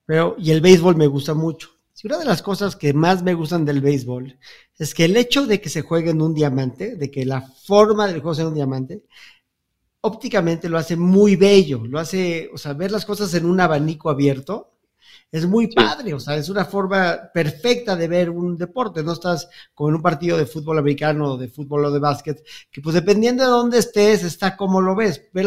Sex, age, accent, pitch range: male, 50-69, Mexican, 155-200 Hz